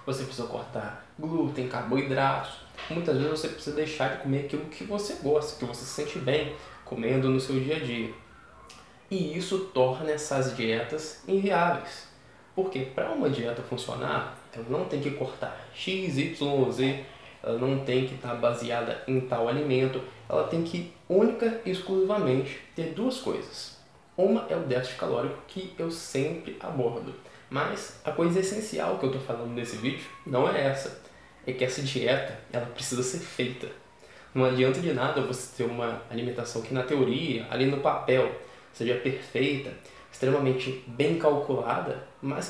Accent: Brazilian